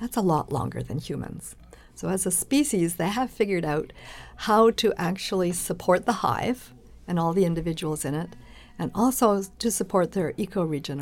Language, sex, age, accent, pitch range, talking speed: English, female, 50-69, American, 165-210 Hz, 175 wpm